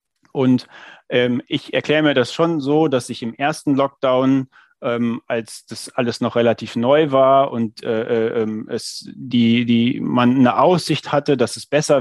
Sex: male